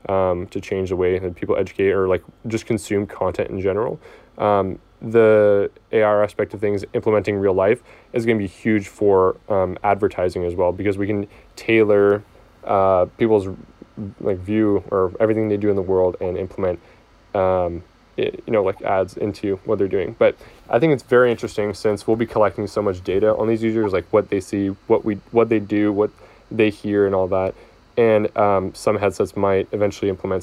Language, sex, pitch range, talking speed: English, male, 95-110 Hz, 195 wpm